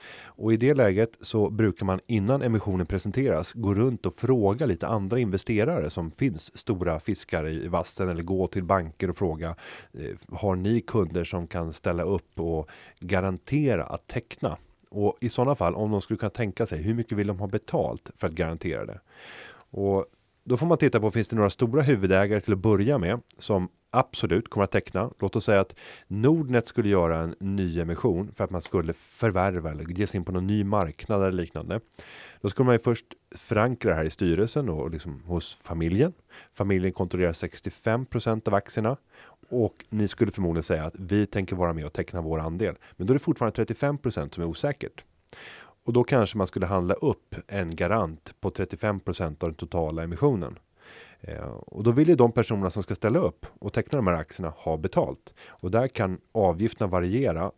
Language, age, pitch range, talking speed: Swedish, 30-49, 90-115 Hz, 190 wpm